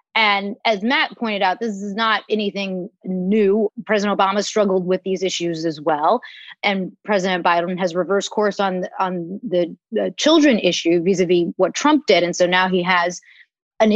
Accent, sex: American, female